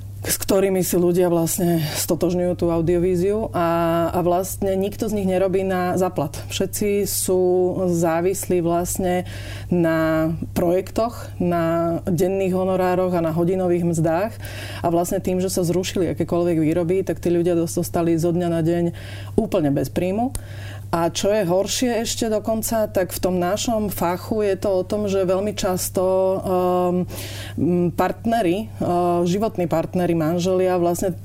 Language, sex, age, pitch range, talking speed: Slovak, female, 30-49, 170-185 Hz, 140 wpm